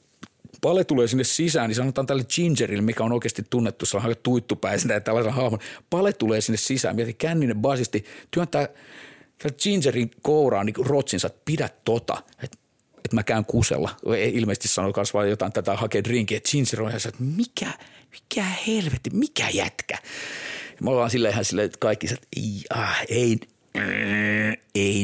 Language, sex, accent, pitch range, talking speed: Finnish, male, native, 100-120 Hz, 155 wpm